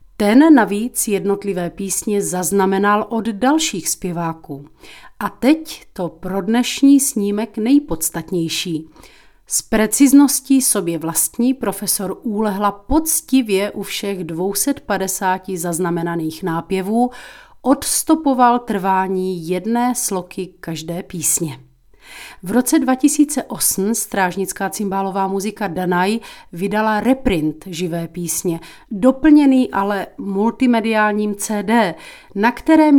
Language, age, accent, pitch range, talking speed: Czech, 40-59, native, 180-240 Hz, 90 wpm